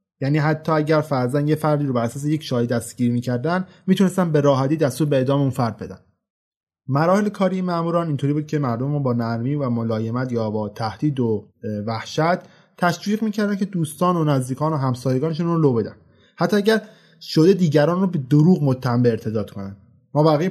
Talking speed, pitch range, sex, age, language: 180 wpm, 125-160 Hz, male, 20-39, Persian